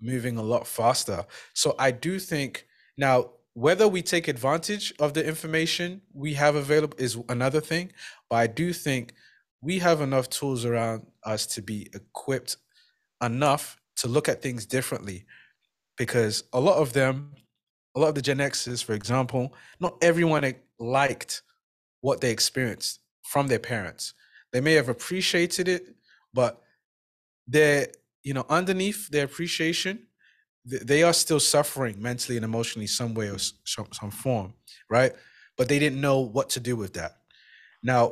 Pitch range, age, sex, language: 115-150 Hz, 20-39, male, English